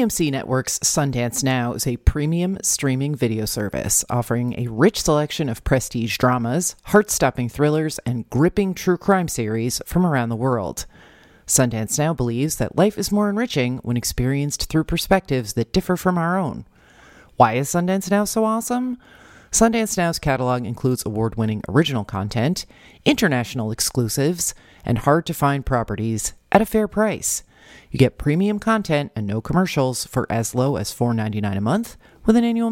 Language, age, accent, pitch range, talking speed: English, 40-59, American, 115-170 Hz, 160 wpm